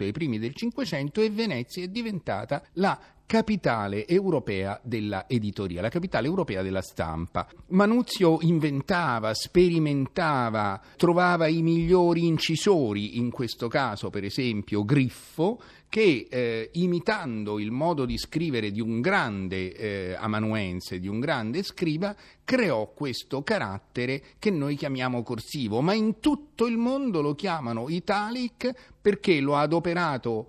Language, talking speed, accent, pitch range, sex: Italian, 130 wpm, native, 115-175 Hz, male